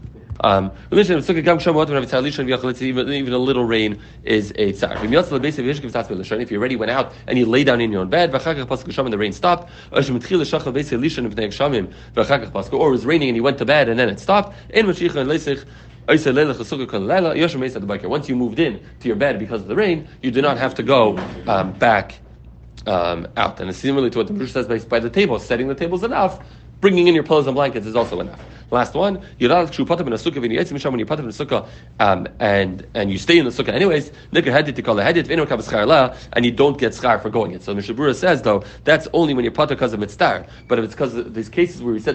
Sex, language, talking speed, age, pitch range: male, English, 195 wpm, 40-59, 110-155 Hz